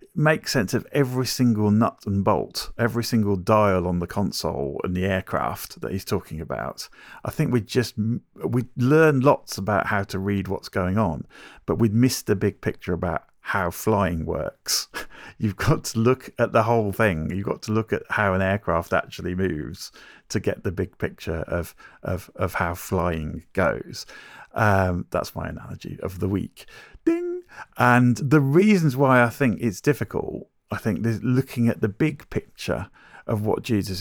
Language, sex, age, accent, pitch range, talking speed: English, male, 40-59, British, 95-130 Hz, 175 wpm